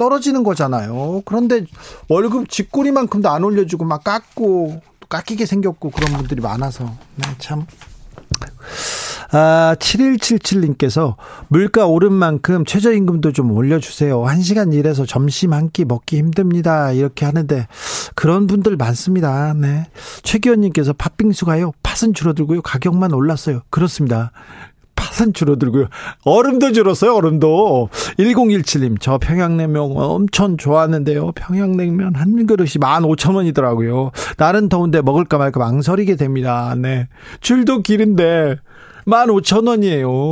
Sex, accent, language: male, native, Korean